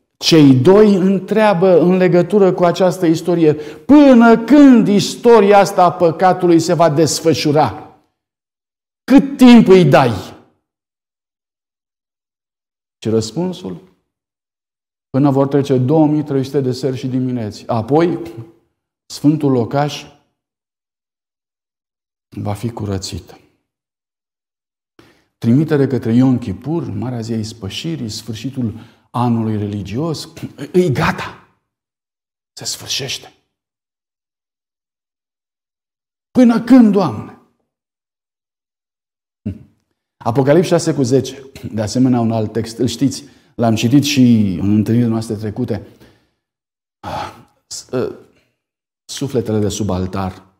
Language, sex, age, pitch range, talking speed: Romanian, male, 50-69, 110-165 Hz, 90 wpm